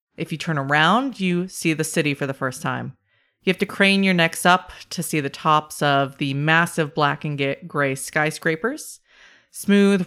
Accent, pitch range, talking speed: American, 145-185 Hz, 185 wpm